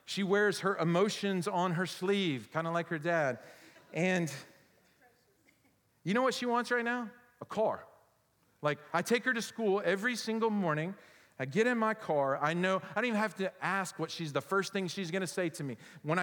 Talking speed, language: 200 wpm, English